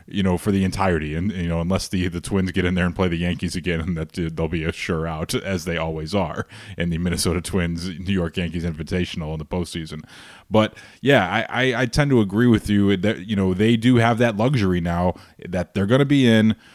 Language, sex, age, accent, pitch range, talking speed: English, male, 20-39, American, 90-105 Hz, 240 wpm